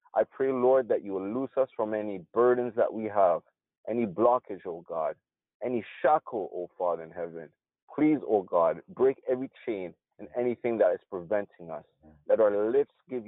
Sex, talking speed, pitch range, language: male, 195 wpm, 100-135 Hz, English